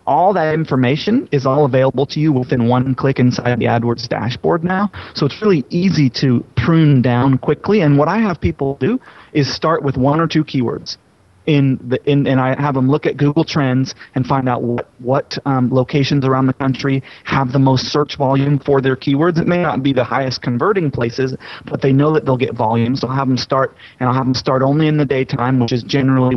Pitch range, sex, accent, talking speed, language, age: 125-145 Hz, male, American, 225 wpm, English, 30-49